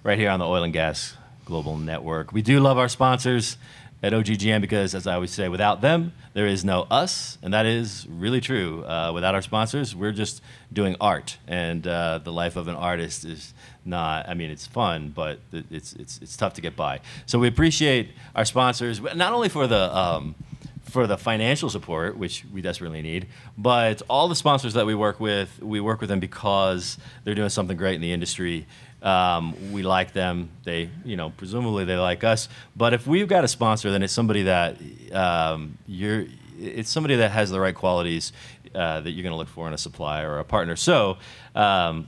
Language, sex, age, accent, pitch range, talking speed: English, male, 40-59, American, 90-125 Hz, 205 wpm